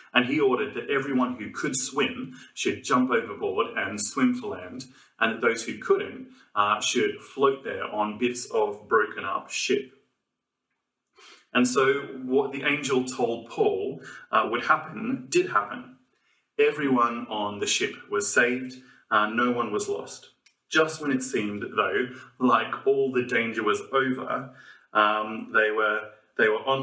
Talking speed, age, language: 155 wpm, 30-49, English